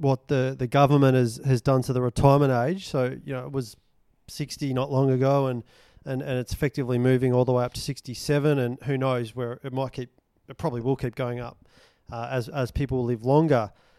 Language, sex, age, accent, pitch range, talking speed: English, male, 30-49, Australian, 130-145 Hz, 225 wpm